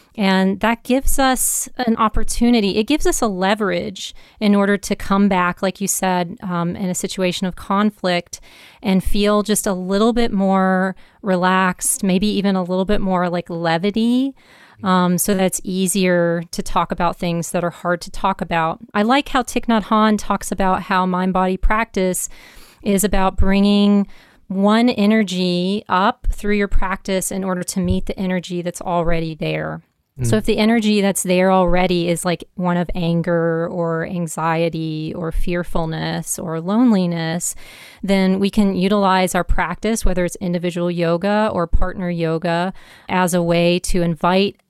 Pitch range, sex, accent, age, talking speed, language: 170-200 Hz, female, American, 30-49, 160 wpm, English